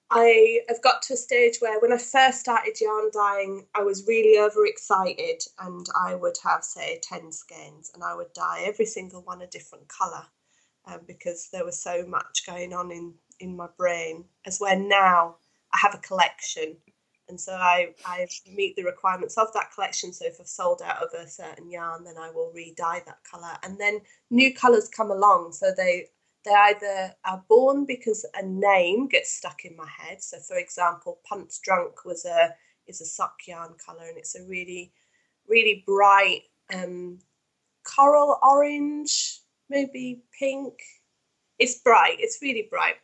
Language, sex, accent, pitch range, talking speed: English, female, British, 185-275 Hz, 175 wpm